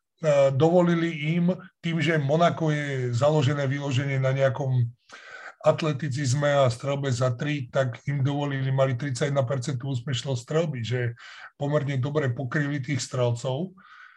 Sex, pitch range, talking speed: male, 135-160 Hz, 120 wpm